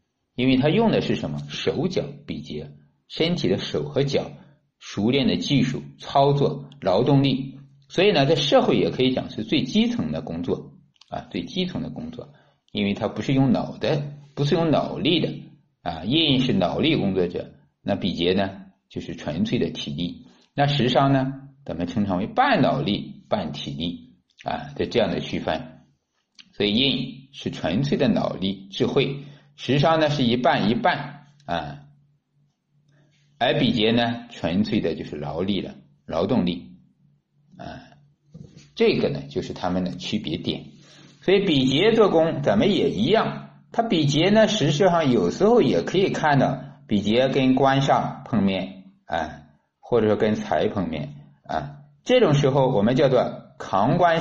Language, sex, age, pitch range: Chinese, male, 50-69, 105-155 Hz